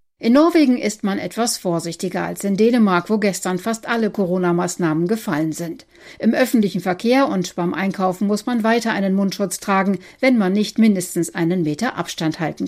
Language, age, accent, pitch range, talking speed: German, 50-69, German, 170-215 Hz, 170 wpm